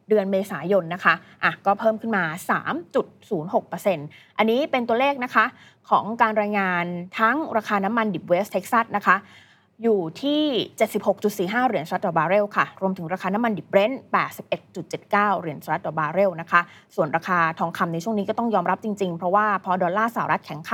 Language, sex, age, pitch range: Thai, female, 20-39, 175-220 Hz